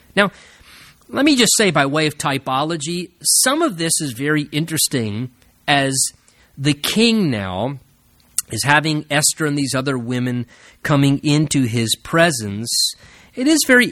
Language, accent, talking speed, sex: English, American, 140 wpm, male